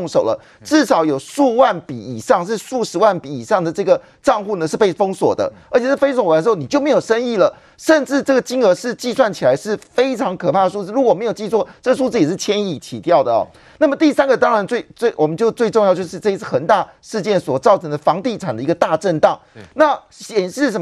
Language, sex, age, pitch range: Chinese, male, 30-49, 175-245 Hz